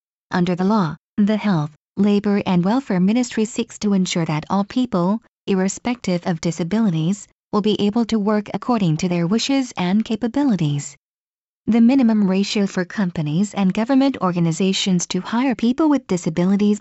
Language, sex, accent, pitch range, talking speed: English, female, American, 185-240 Hz, 150 wpm